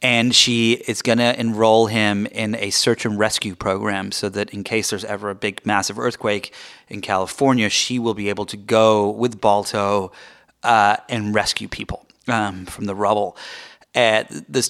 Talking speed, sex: 170 wpm, male